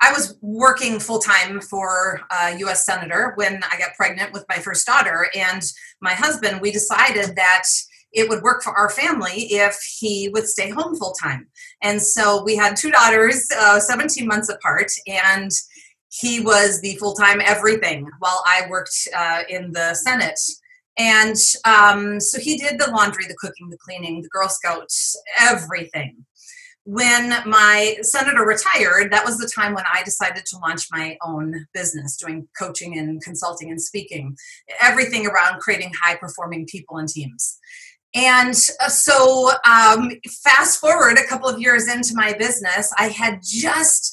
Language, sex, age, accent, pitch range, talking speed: English, female, 30-49, American, 185-235 Hz, 160 wpm